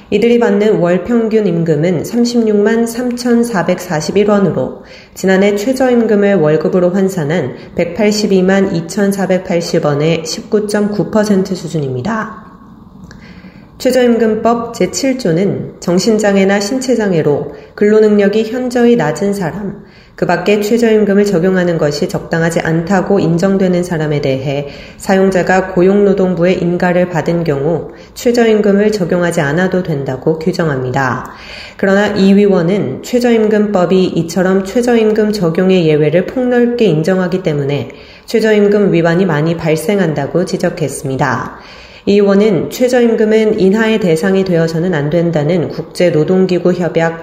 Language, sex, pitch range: Korean, female, 165-210 Hz